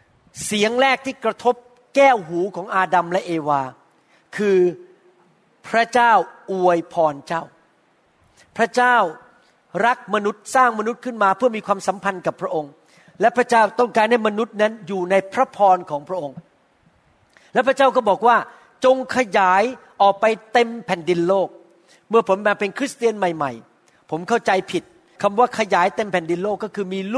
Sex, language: male, Thai